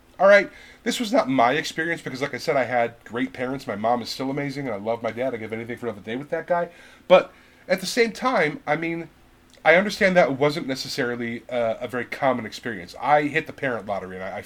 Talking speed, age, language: 235 wpm, 30-49, English